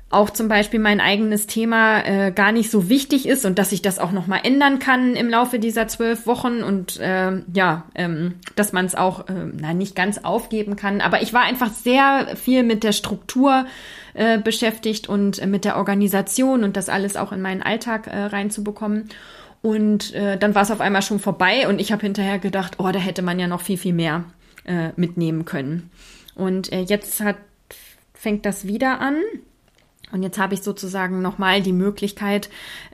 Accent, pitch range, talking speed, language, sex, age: German, 185-220 Hz, 190 wpm, German, female, 20-39